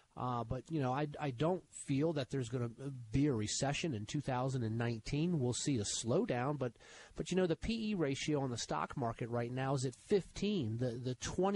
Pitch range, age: 125-175 Hz, 40-59